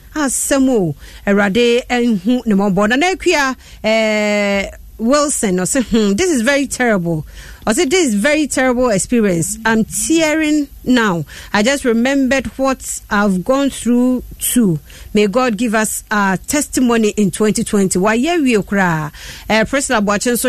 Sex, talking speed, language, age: female, 140 wpm, English, 40-59